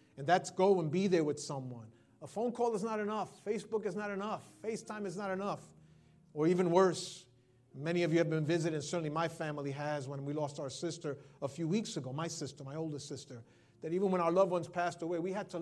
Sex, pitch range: male, 155-205 Hz